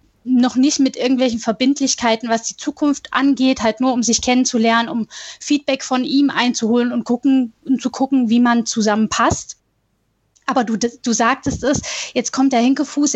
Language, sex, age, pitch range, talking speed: German, female, 10-29, 235-270 Hz, 160 wpm